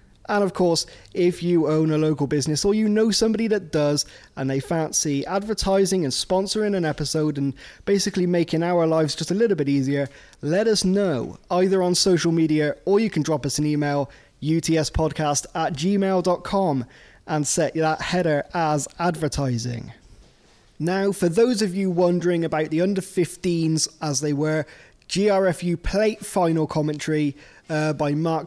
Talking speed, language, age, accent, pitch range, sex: 160 wpm, English, 20-39, British, 150-185 Hz, male